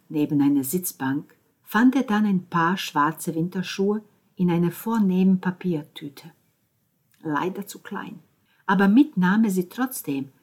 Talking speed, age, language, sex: 120 wpm, 50-69, German, female